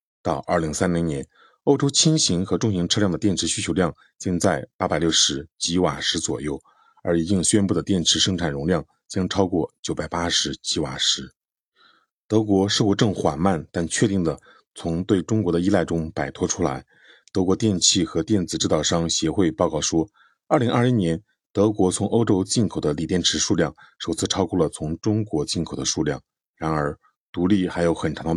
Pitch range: 85-105 Hz